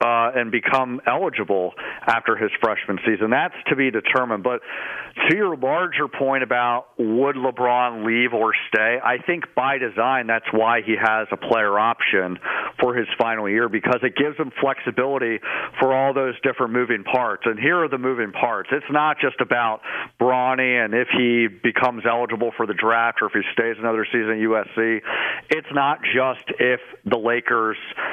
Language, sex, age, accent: English, male, 50-69, American